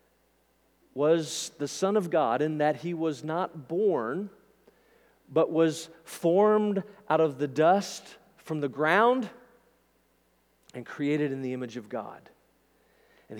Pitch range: 150-205 Hz